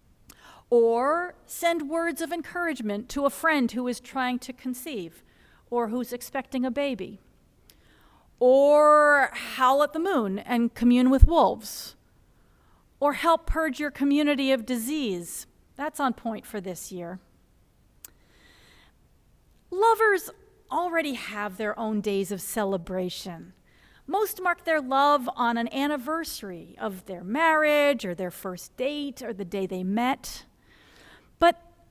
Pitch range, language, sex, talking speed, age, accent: 220-295 Hz, English, female, 130 wpm, 40-59, American